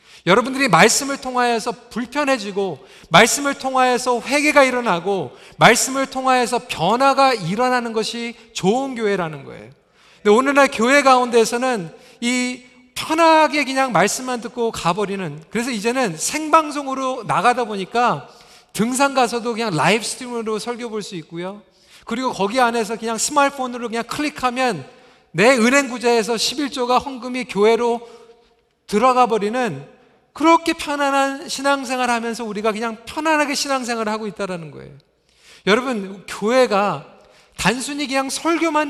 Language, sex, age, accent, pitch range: Korean, male, 40-59, native, 220-270 Hz